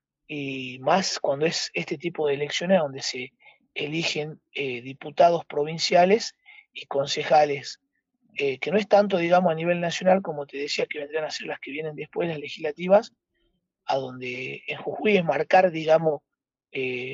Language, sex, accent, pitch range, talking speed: Spanish, male, Argentinian, 145-190 Hz, 160 wpm